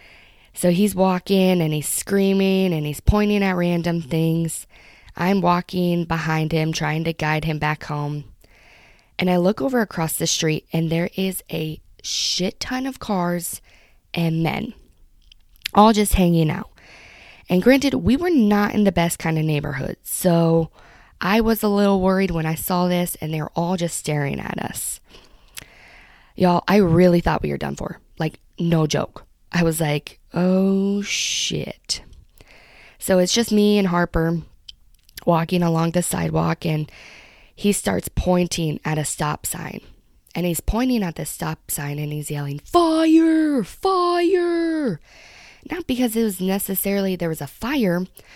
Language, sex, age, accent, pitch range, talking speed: English, female, 20-39, American, 160-200 Hz, 155 wpm